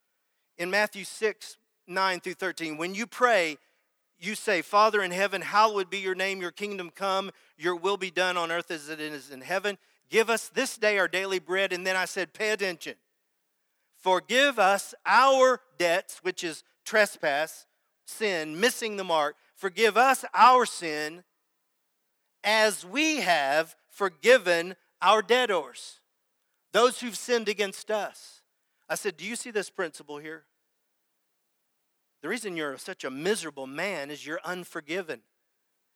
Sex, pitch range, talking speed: male, 155-210 Hz, 150 wpm